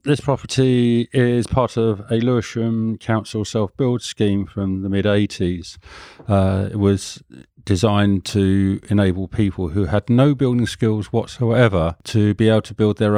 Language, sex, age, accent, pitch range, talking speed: English, male, 40-59, British, 95-110 Hz, 140 wpm